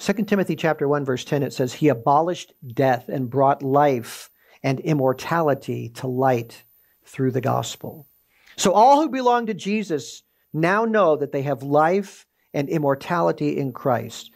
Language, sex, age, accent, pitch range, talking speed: English, male, 50-69, American, 135-205 Hz, 155 wpm